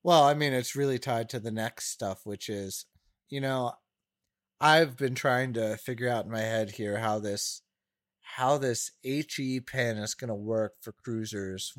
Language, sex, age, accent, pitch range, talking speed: English, male, 30-49, American, 105-130 Hz, 185 wpm